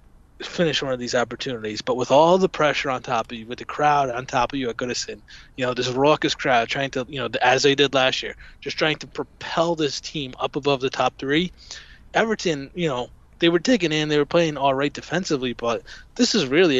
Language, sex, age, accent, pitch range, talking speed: English, male, 20-39, American, 125-150 Hz, 230 wpm